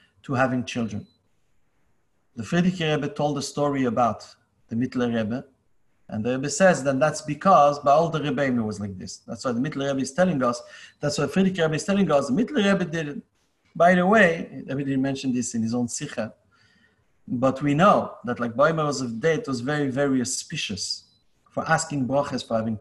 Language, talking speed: English, 200 wpm